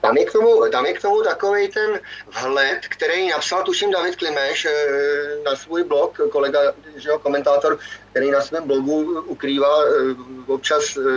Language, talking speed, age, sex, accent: Czech, 130 wpm, 30-49, male, native